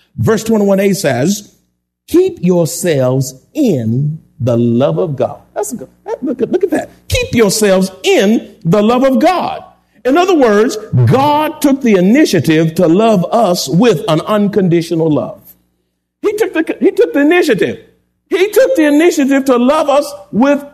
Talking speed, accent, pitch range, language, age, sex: 145 wpm, American, 195-280 Hz, English, 50-69, male